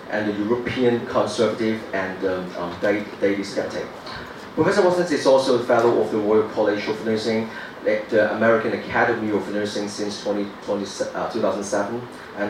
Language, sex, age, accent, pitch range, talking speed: English, male, 30-49, Malaysian, 105-120 Hz, 160 wpm